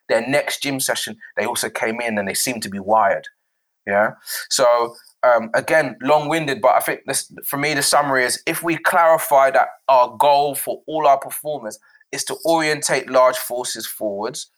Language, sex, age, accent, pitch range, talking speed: English, male, 20-39, British, 115-150 Hz, 185 wpm